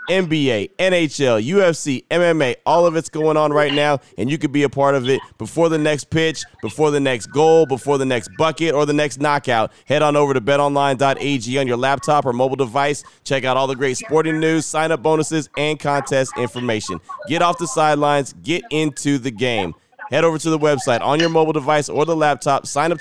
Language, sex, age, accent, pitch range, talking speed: English, male, 30-49, American, 135-160 Hz, 210 wpm